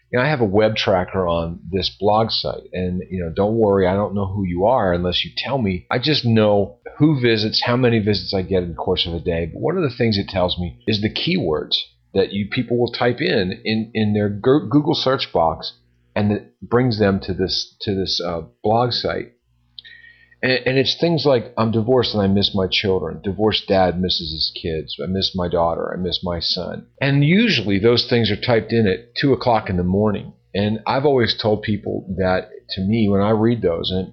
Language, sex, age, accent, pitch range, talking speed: English, male, 40-59, American, 95-120 Hz, 220 wpm